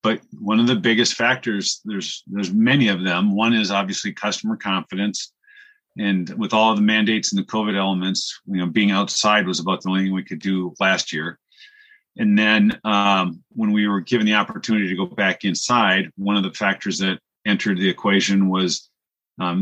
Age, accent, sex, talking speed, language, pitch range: 40-59, American, male, 195 wpm, English, 95-120 Hz